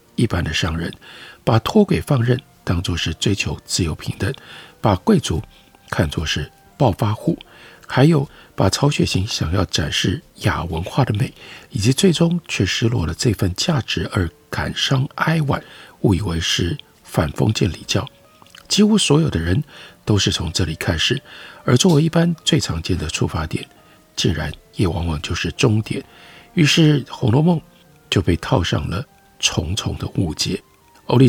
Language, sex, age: Chinese, male, 50-69